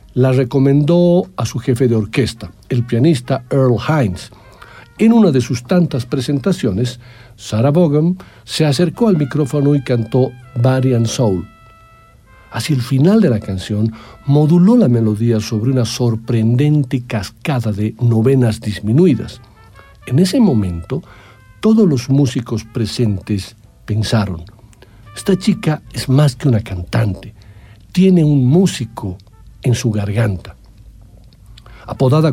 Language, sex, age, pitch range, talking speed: Spanish, male, 60-79, 110-145 Hz, 120 wpm